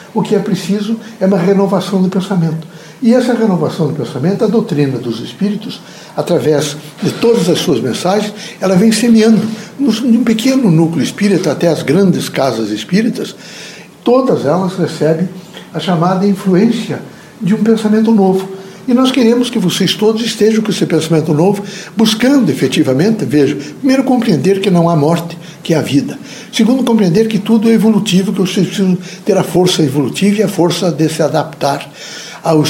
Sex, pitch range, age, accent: male, 170-220 Hz, 60-79, Brazilian